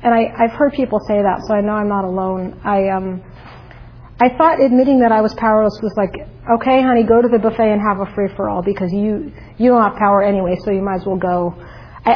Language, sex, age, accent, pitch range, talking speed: English, female, 40-59, American, 205-265 Hz, 245 wpm